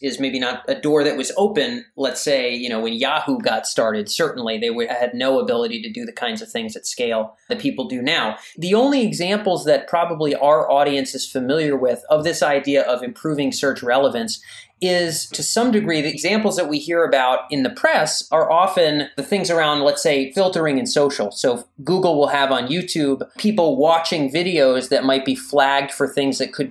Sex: male